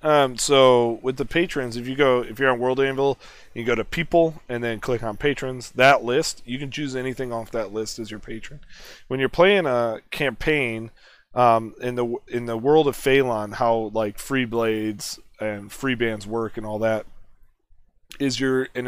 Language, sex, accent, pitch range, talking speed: English, male, American, 110-130 Hz, 195 wpm